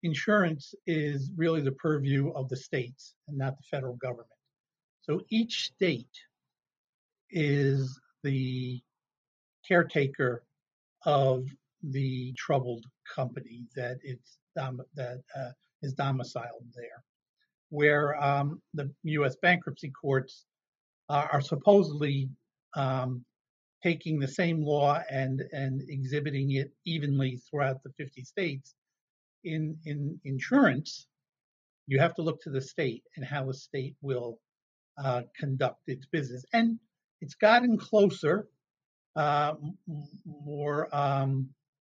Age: 50-69